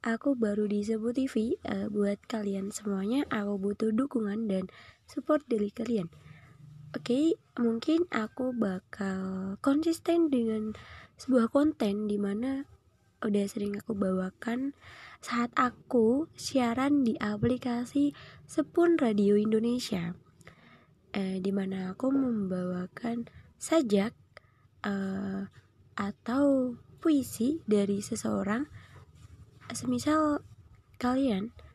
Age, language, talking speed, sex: 20-39, Indonesian, 95 wpm, female